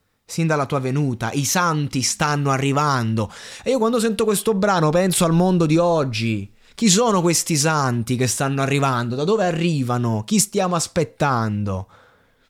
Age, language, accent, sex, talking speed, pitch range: 20-39, Italian, native, male, 155 wpm, 130-175 Hz